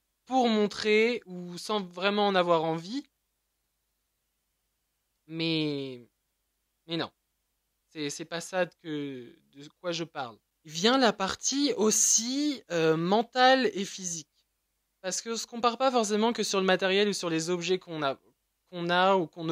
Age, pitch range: 20-39, 165-200 Hz